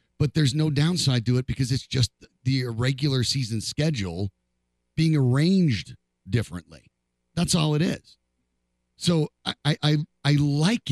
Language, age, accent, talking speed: English, 50-69, American, 135 wpm